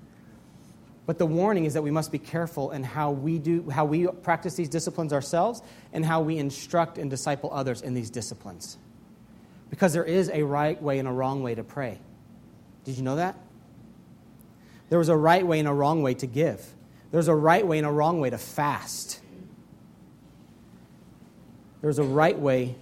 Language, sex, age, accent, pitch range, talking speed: English, male, 40-59, American, 135-165 Hz, 185 wpm